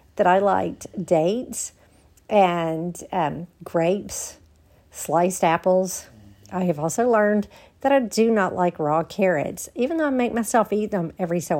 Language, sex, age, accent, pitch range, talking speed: English, female, 50-69, American, 170-230 Hz, 150 wpm